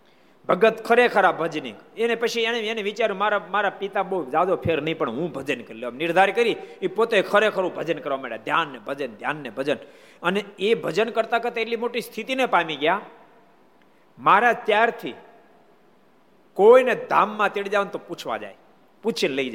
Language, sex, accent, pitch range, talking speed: Gujarati, male, native, 175-230 Hz, 40 wpm